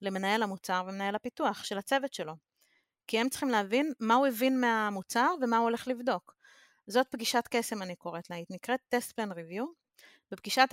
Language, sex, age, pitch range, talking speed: Hebrew, female, 30-49, 195-250 Hz, 175 wpm